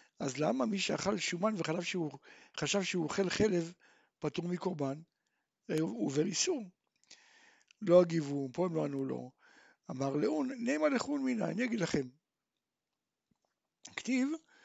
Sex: male